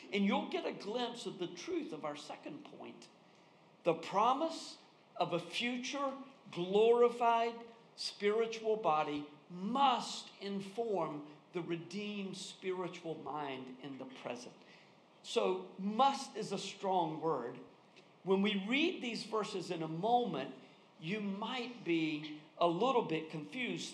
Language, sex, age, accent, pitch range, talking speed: English, male, 50-69, American, 175-240 Hz, 125 wpm